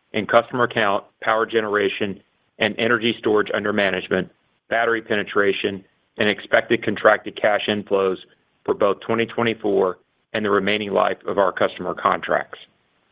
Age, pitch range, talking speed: 40-59, 100-115 Hz, 130 wpm